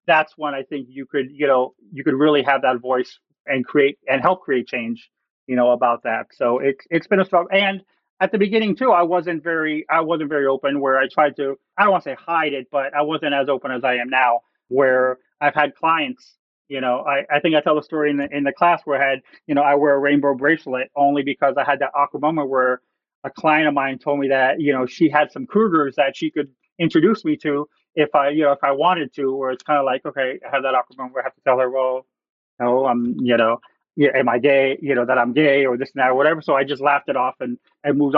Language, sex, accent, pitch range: English, male, American, 135-175 Hz